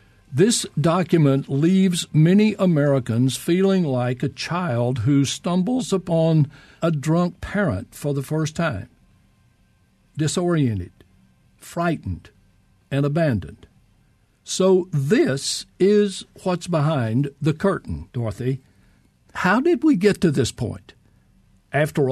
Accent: American